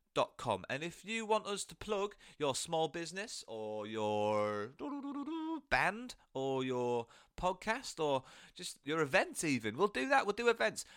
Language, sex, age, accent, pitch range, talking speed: English, male, 30-49, British, 125-195 Hz, 160 wpm